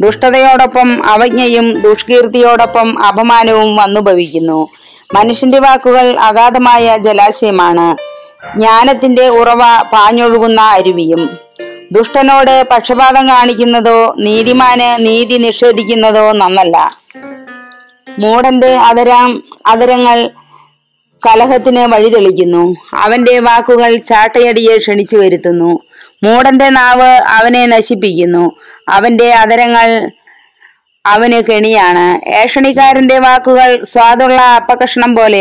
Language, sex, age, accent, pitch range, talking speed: Malayalam, female, 20-39, native, 210-245 Hz, 75 wpm